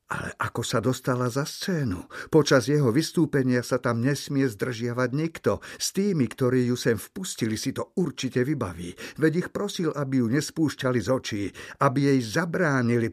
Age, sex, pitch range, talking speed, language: 50-69, male, 115-140 Hz, 160 wpm, Slovak